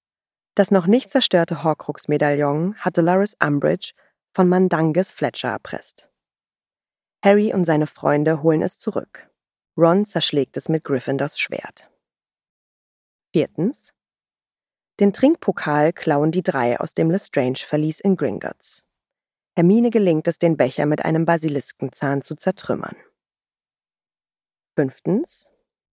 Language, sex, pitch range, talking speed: German, female, 150-190 Hz, 110 wpm